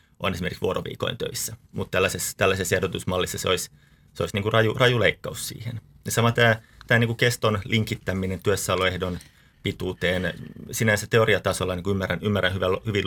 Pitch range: 95-110 Hz